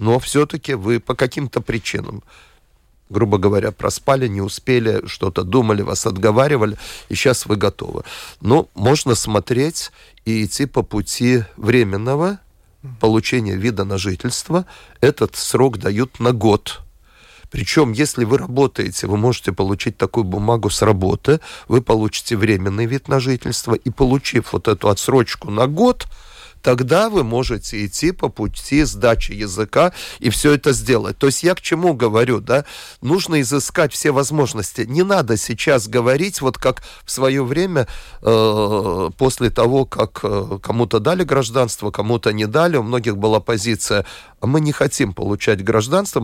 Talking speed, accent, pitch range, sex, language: 145 wpm, native, 105-135 Hz, male, Russian